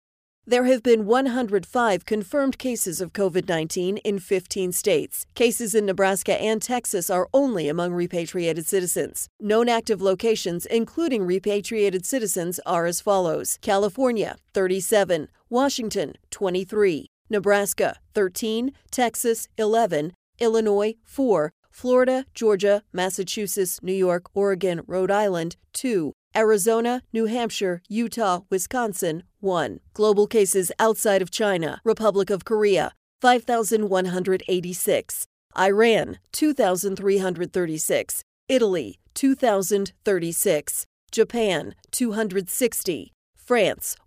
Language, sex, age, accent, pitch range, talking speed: English, female, 40-59, American, 185-225 Hz, 95 wpm